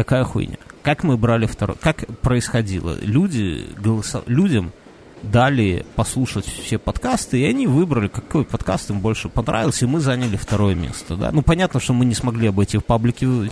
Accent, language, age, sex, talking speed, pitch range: native, Russian, 30-49, male, 160 wpm, 105-140 Hz